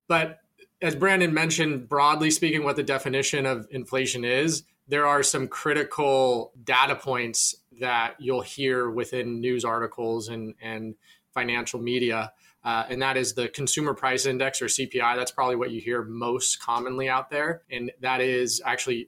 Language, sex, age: English, male, 20-39